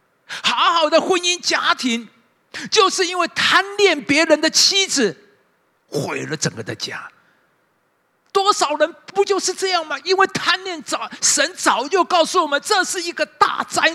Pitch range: 250-345 Hz